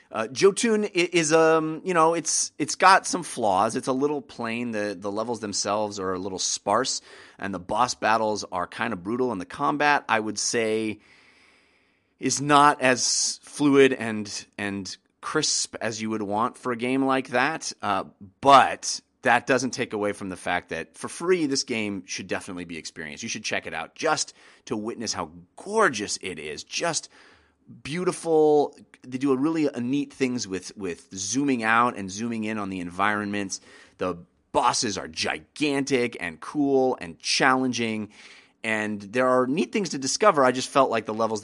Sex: male